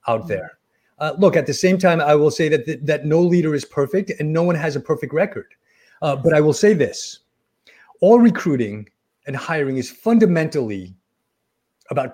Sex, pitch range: male, 130-175 Hz